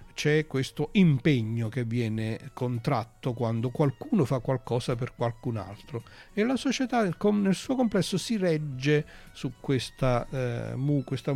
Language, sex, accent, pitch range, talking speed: Italian, male, native, 110-140 Hz, 125 wpm